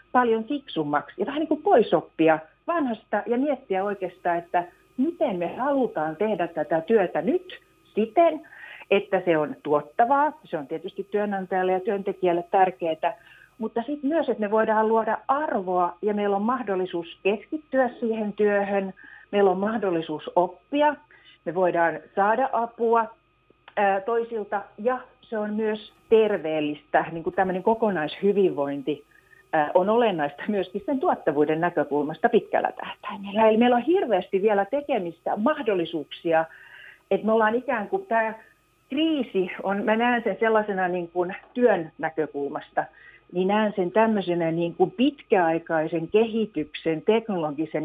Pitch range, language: 170-230 Hz, Finnish